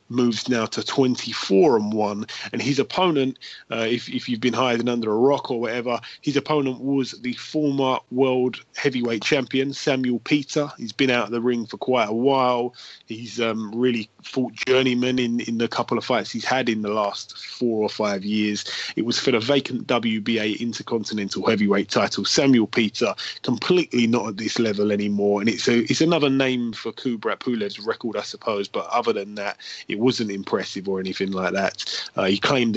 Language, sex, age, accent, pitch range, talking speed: English, male, 20-39, British, 110-135 Hz, 190 wpm